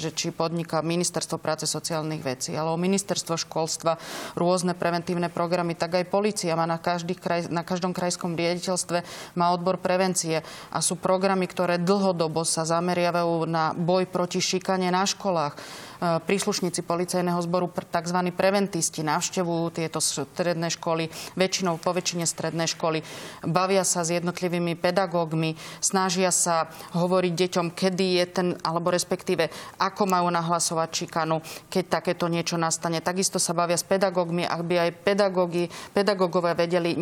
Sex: female